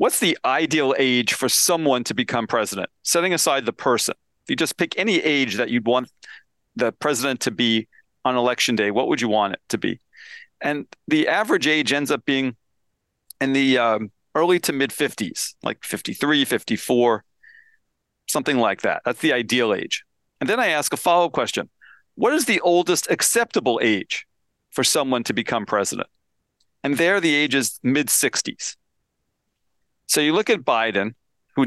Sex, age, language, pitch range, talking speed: male, 40-59, English, 120-155 Hz, 170 wpm